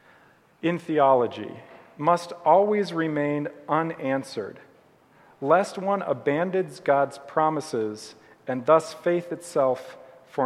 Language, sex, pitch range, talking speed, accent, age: English, male, 135-170 Hz, 90 wpm, American, 40-59